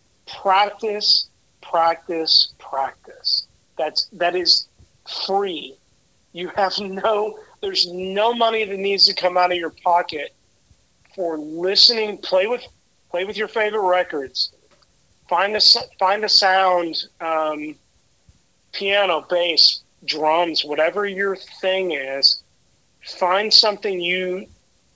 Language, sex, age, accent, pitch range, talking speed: English, male, 40-59, American, 160-200 Hz, 110 wpm